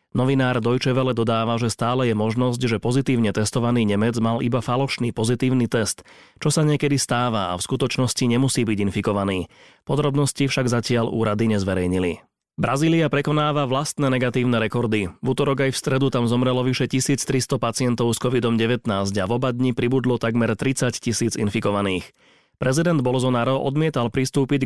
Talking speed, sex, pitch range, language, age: 150 wpm, male, 115-130 Hz, Slovak, 30-49